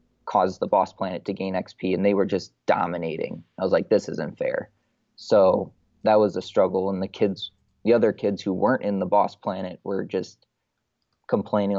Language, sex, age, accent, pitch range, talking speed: English, male, 20-39, American, 100-120 Hz, 195 wpm